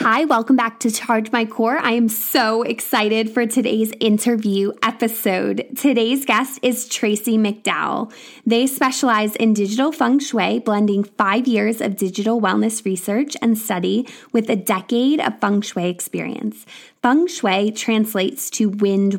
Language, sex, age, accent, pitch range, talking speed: English, female, 20-39, American, 205-250 Hz, 145 wpm